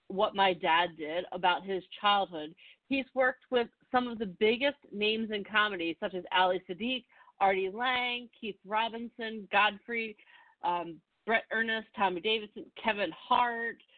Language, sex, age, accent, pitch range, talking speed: English, female, 40-59, American, 195-245 Hz, 140 wpm